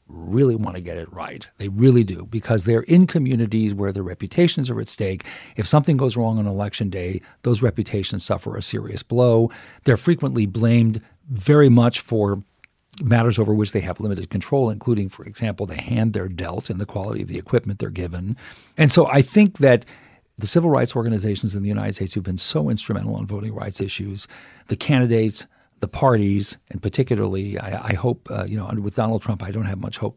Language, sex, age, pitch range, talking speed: English, male, 50-69, 100-125 Hz, 205 wpm